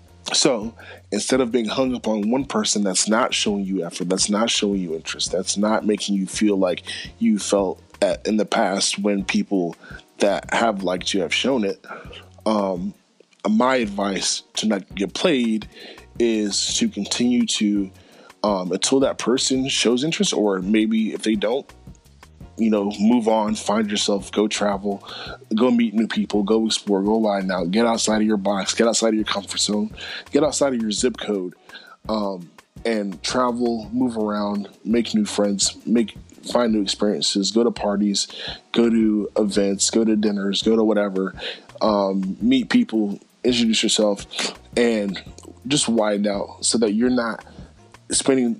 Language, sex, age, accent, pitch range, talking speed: English, male, 20-39, American, 100-115 Hz, 165 wpm